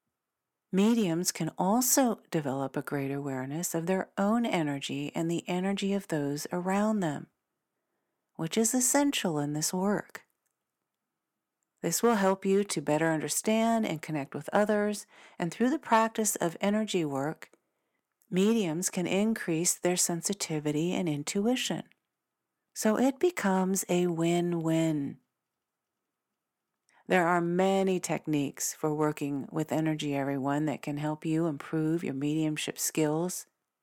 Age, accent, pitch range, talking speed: 50-69, American, 155-220 Hz, 130 wpm